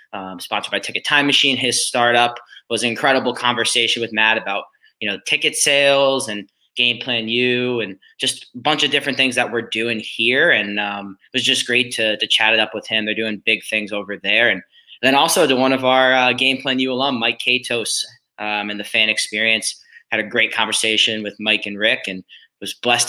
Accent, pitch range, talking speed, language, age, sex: American, 110-125 Hz, 220 wpm, English, 20-39, male